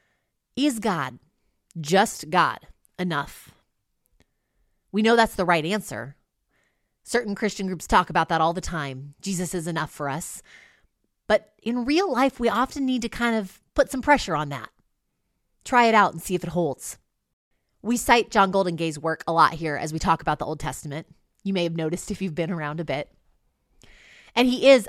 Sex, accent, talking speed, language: female, American, 185 wpm, English